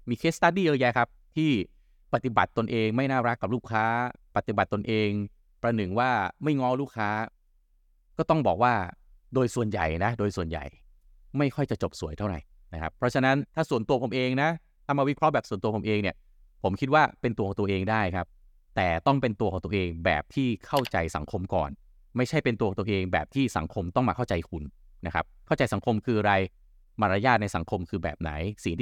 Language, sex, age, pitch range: Thai, male, 20-39, 90-125 Hz